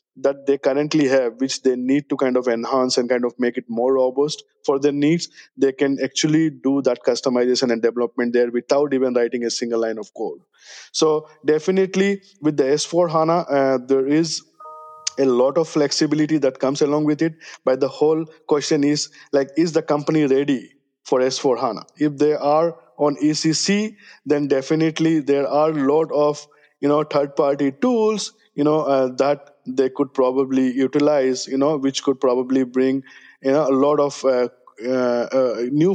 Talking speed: 175 wpm